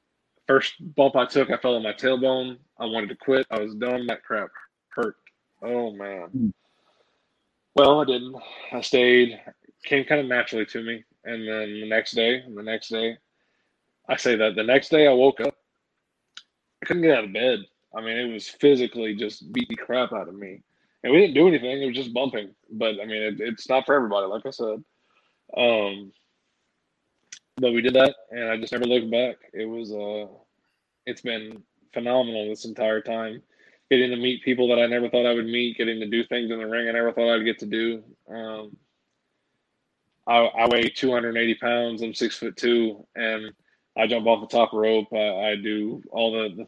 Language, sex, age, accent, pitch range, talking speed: English, male, 20-39, American, 110-125 Hz, 205 wpm